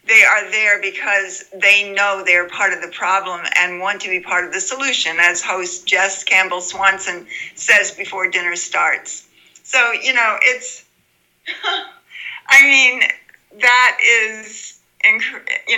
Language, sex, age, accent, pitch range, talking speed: English, female, 60-79, American, 185-230 Hz, 140 wpm